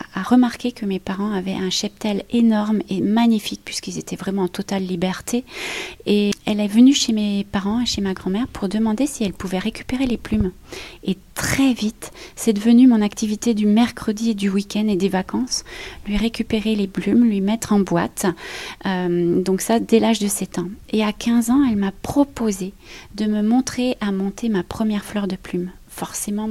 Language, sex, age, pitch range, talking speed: French, female, 30-49, 195-235 Hz, 190 wpm